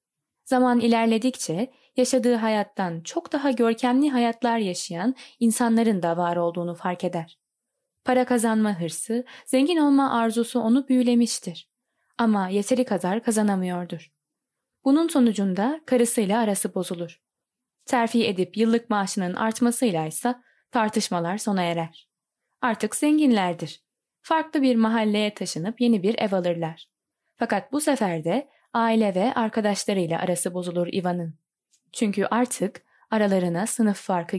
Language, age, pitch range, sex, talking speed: Turkish, 10-29, 195-250 Hz, female, 115 wpm